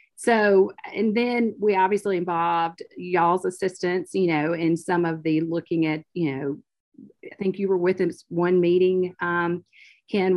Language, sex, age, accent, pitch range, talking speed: English, female, 40-59, American, 160-190 Hz, 160 wpm